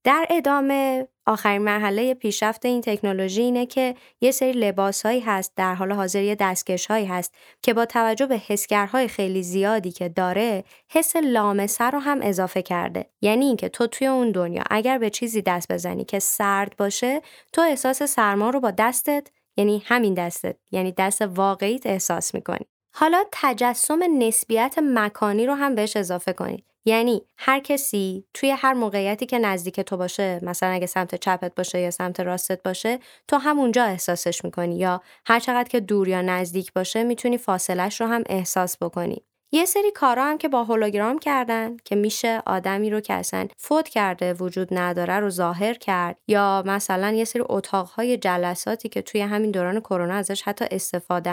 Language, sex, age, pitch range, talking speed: Persian, female, 20-39, 185-245 Hz, 165 wpm